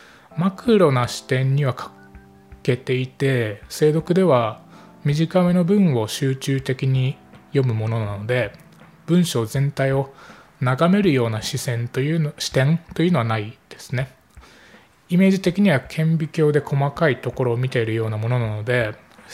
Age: 20-39